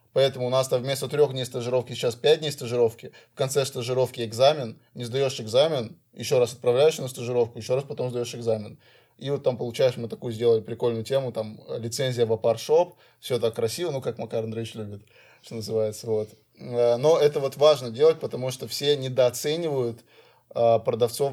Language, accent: Russian, native